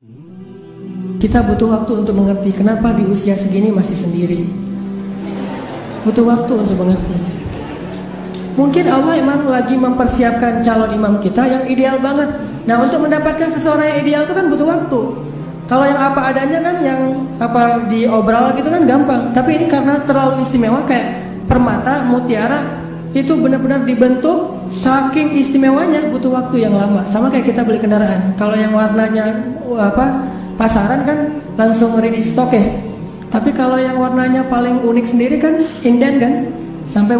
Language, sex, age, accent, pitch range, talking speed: Indonesian, female, 30-49, native, 210-260 Hz, 145 wpm